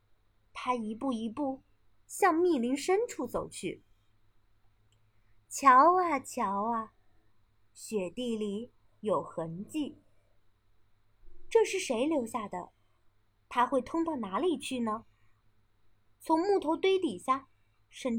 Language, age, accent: Chinese, 30-49, native